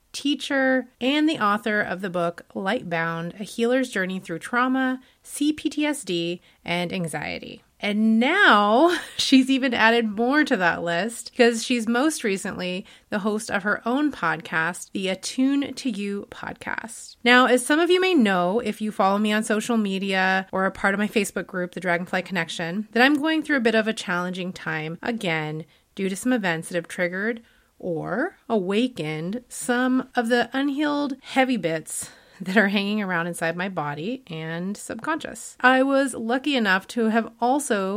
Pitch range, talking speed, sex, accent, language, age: 180-250 Hz, 170 wpm, female, American, English, 30-49